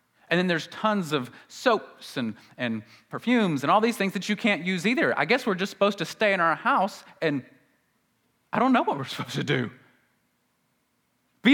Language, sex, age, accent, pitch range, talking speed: English, male, 30-49, American, 115-185 Hz, 200 wpm